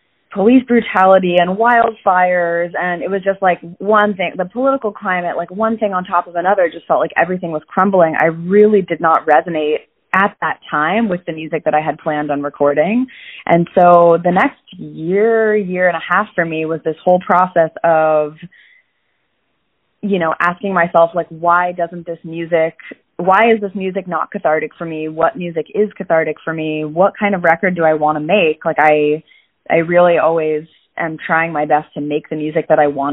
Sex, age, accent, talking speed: female, 20-39, American, 195 wpm